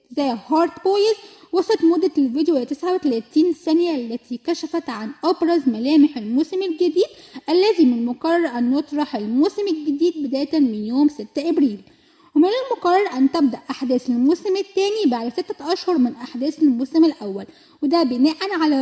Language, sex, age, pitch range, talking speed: Arabic, female, 10-29, 270-350 Hz, 145 wpm